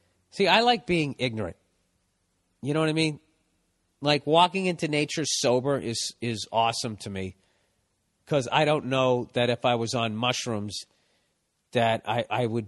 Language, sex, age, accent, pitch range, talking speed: English, male, 40-59, American, 110-160 Hz, 160 wpm